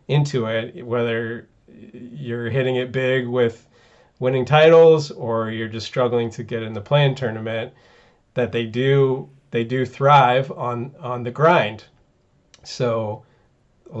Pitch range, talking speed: 120-140 Hz, 135 wpm